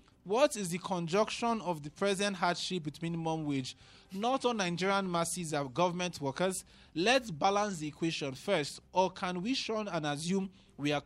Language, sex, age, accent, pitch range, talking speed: English, male, 20-39, Nigerian, 140-195 Hz, 170 wpm